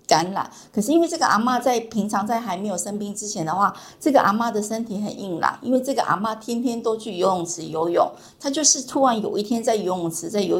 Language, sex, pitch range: Chinese, female, 185-235 Hz